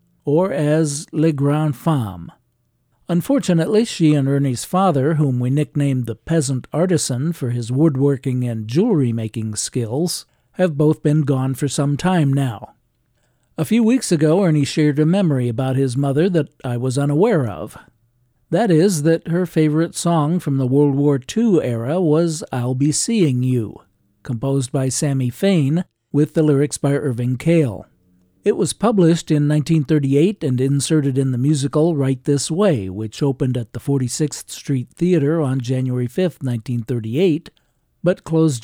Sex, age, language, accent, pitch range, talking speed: male, 50-69, English, American, 130-160 Hz, 155 wpm